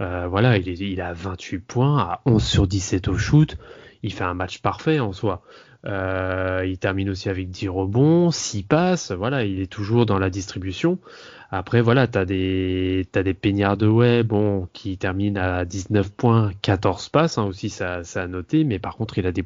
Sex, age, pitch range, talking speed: male, 20-39, 95-115 Hz, 205 wpm